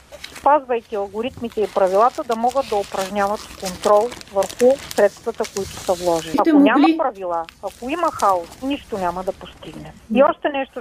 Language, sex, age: Bulgarian, female, 40-59